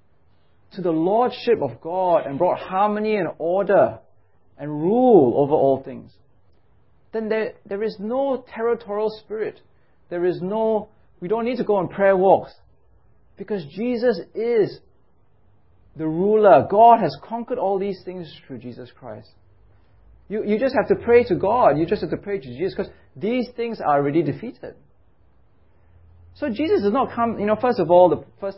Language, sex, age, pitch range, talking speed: English, male, 30-49, 130-210 Hz, 170 wpm